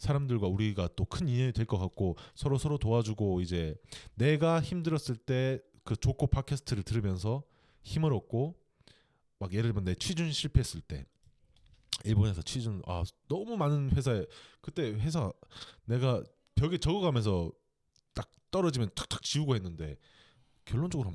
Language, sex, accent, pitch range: Korean, male, native, 100-145 Hz